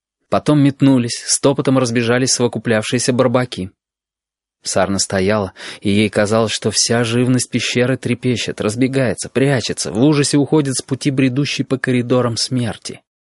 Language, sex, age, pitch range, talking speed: Russian, male, 20-39, 110-130 Hz, 120 wpm